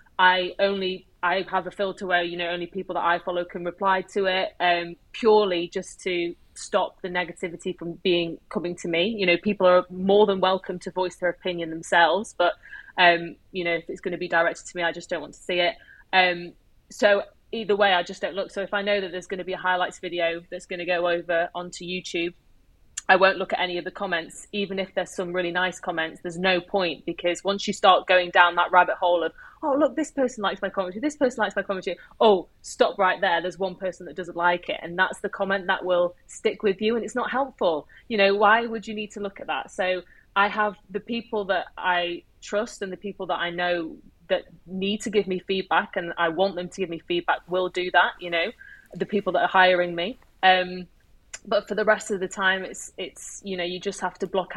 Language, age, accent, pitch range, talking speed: English, 30-49, British, 175-200 Hz, 240 wpm